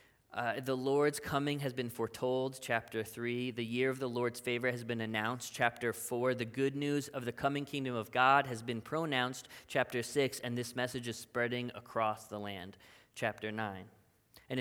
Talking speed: 185 wpm